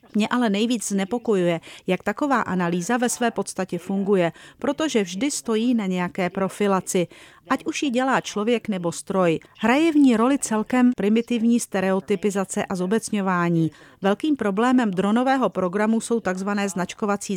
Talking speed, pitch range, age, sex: 140 wpm, 180-235 Hz, 40-59, female